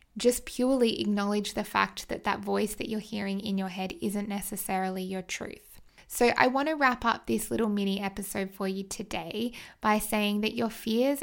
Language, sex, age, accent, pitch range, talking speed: English, female, 10-29, Australian, 200-230 Hz, 185 wpm